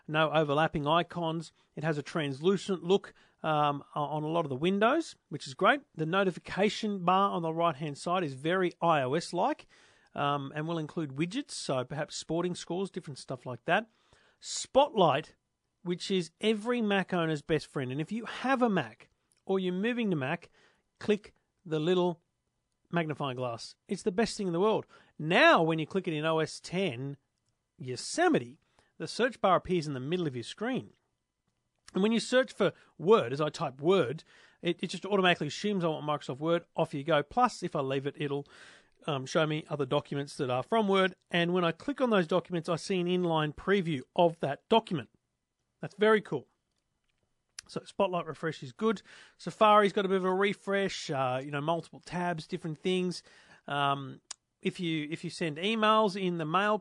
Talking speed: 185 wpm